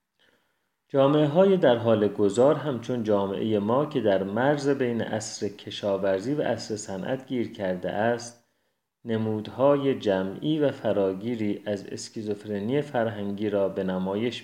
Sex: male